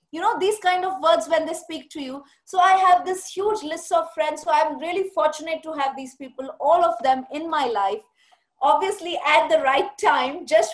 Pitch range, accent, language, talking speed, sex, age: 275-360 Hz, Indian, English, 220 wpm, female, 30-49